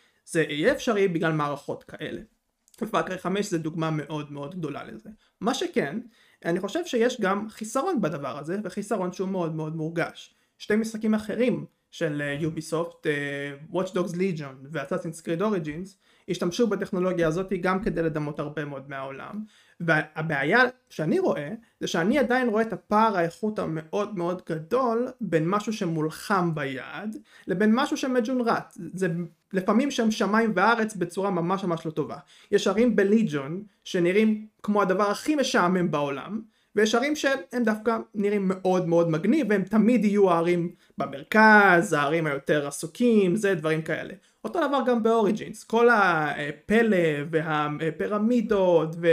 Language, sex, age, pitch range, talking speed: Hebrew, male, 30-49, 165-220 Hz, 140 wpm